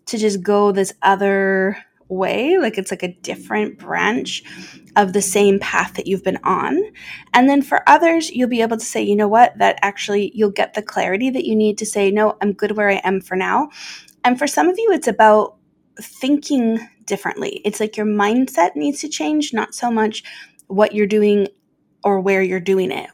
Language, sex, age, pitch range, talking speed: English, female, 20-39, 195-230 Hz, 200 wpm